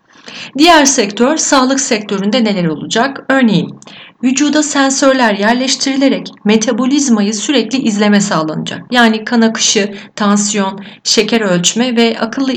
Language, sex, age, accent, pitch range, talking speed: Turkish, female, 40-59, native, 195-265 Hz, 105 wpm